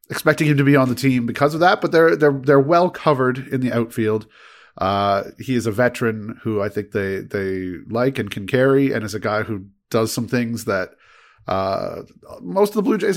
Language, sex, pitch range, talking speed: English, male, 100-125 Hz, 220 wpm